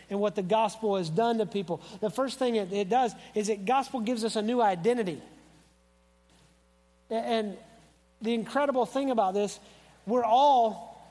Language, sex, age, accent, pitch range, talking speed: English, male, 40-59, American, 170-225 Hz, 155 wpm